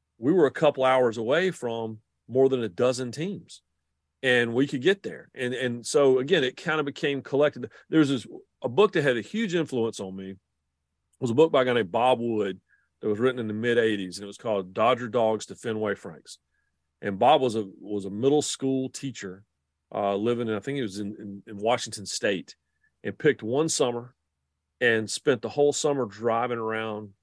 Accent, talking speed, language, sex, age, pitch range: American, 205 wpm, English, male, 40-59, 105-135 Hz